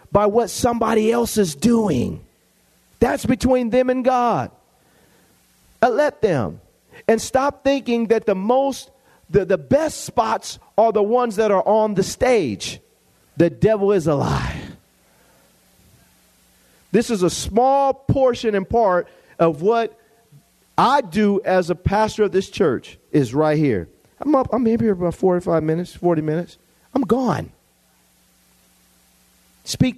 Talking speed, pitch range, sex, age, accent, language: 140 wpm, 160-245 Hz, male, 40-59, American, English